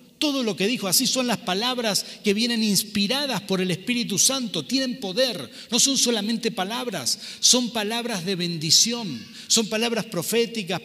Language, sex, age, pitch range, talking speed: Spanish, male, 40-59, 175-220 Hz, 155 wpm